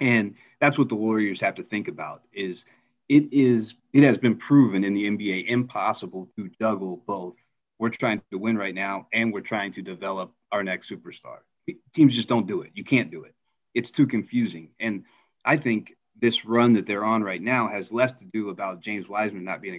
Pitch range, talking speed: 100-120 Hz, 205 wpm